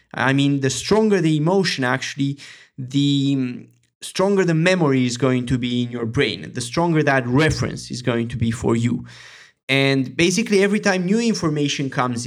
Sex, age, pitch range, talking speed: male, 30-49, 130-165 Hz, 170 wpm